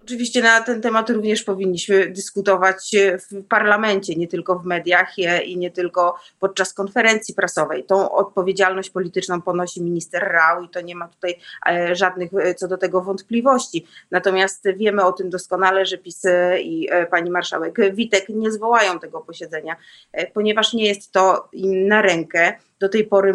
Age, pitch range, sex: 30-49, 175-205 Hz, female